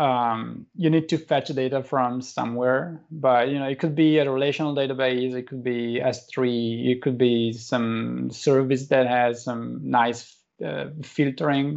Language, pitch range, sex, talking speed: English, 125-150 Hz, male, 165 wpm